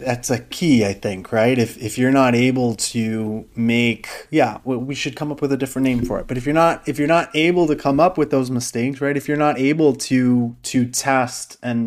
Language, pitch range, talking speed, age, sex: English, 115-135 Hz, 240 wpm, 20-39, male